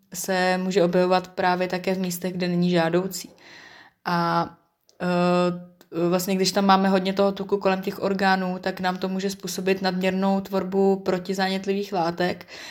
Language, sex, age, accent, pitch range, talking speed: Czech, female, 20-39, native, 175-190 Hz, 145 wpm